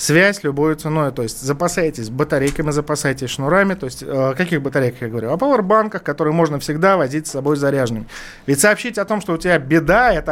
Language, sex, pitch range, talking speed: Russian, male, 140-180 Hz, 205 wpm